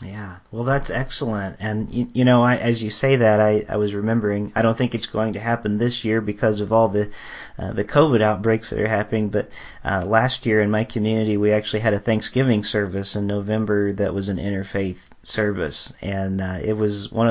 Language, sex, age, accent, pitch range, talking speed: English, male, 40-59, American, 100-115 Hz, 215 wpm